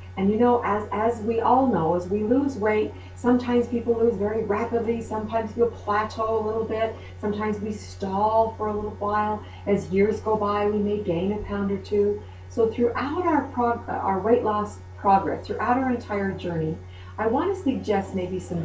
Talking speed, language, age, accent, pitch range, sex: 190 wpm, English, 40-59, American, 160-225 Hz, female